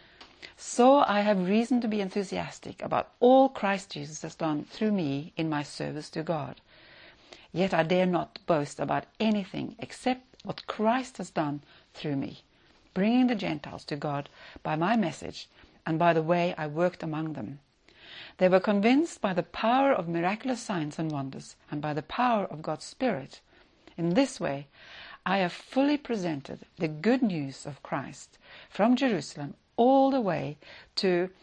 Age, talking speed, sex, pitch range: 60-79, 165 wpm, female, 155-220 Hz